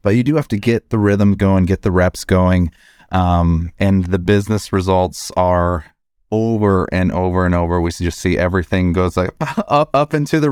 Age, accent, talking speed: 30-49, American, 200 wpm